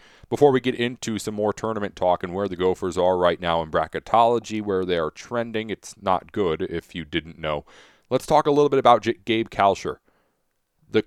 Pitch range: 95-120 Hz